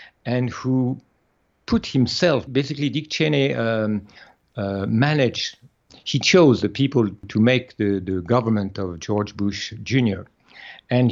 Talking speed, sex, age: 130 wpm, male, 50-69